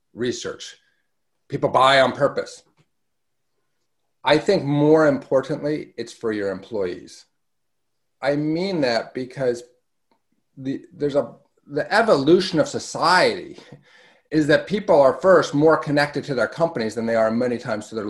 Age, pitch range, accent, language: 30-49, 120-160 Hz, American, English